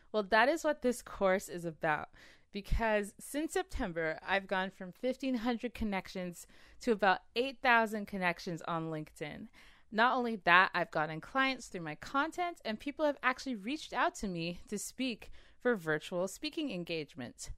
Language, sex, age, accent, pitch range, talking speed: English, female, 20-39, American, 175-250 Hz, 155 wpm